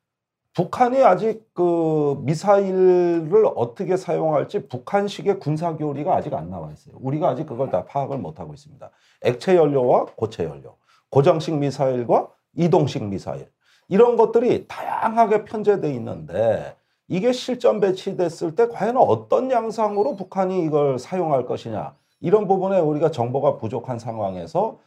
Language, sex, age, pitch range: Korean, male, 40-59, 135-195 Hz